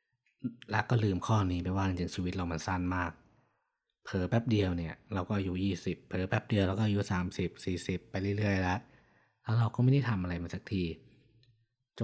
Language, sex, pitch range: Thai, male, 90-115 Hz